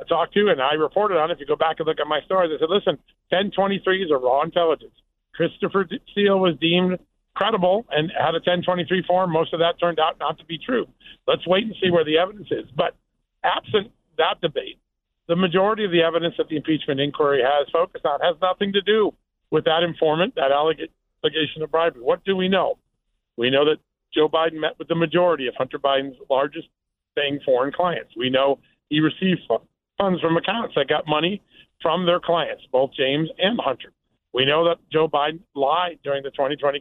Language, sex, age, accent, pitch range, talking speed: English, male, 50-69, American, 150-185 Hz, 205 wpm